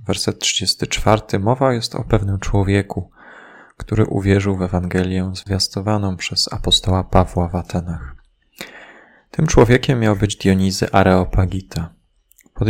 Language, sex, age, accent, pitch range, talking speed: Polish, male, 20-39, native, 95-110 Hz, 115 wpm